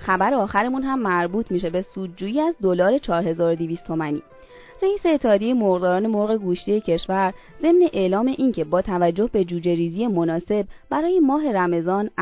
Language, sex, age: Persian, female, 20-39